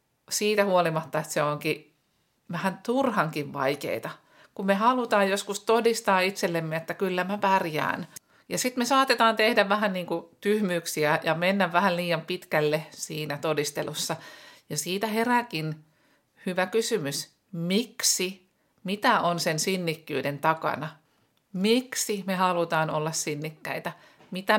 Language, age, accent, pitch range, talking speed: Finnish, 50-69, native, 160-200 Hz, 120 wpm